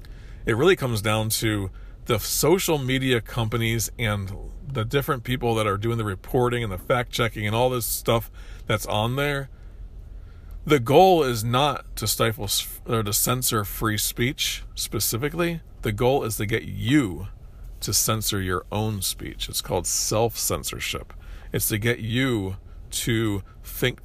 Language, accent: English, American